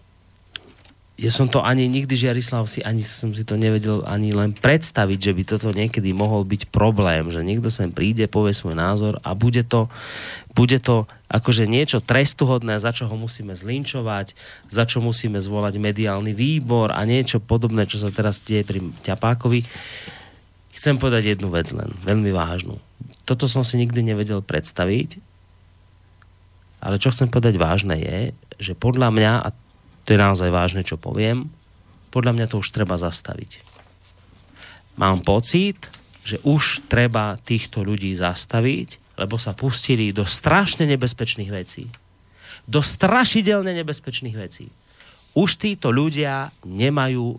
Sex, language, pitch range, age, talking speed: male, Slovak, 100-125 Hz, 30-49, 150 wpm